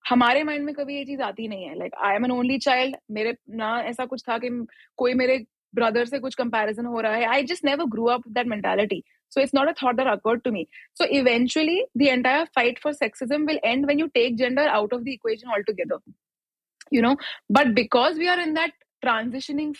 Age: 20-39